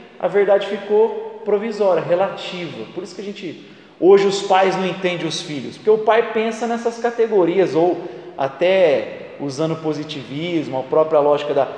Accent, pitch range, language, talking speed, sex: Brazilian, 165-250 Hz, Portuguese, 165 wpm, male